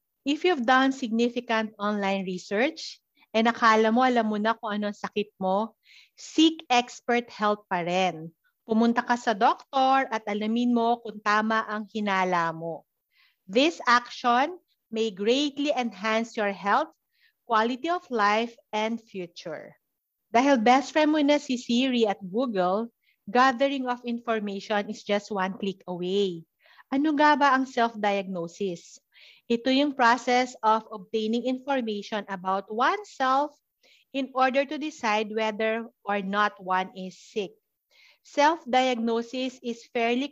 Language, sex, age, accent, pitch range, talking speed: Filipino, female, 40-59, native, 210-260 Hz, 130 wpm